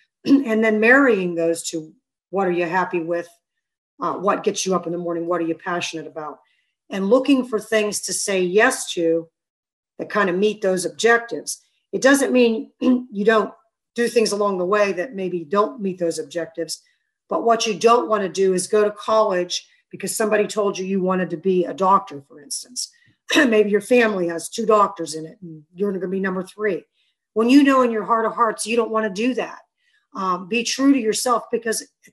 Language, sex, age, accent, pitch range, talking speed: English, female, 50-69, American, 180-230 Hz, 210 wpm